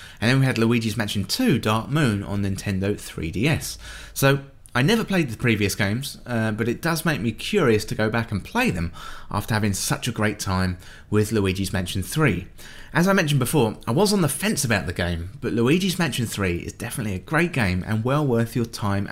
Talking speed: 215 wpm